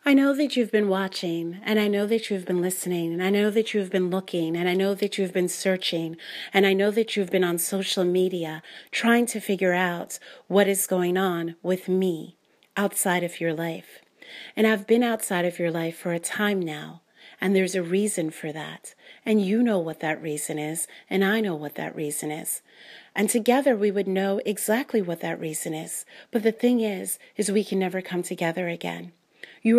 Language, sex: English, female